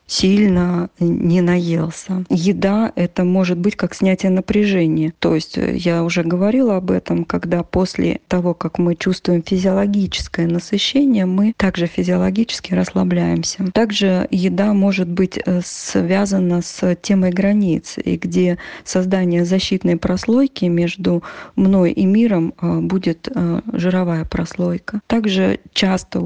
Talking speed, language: 115 wpm, Russian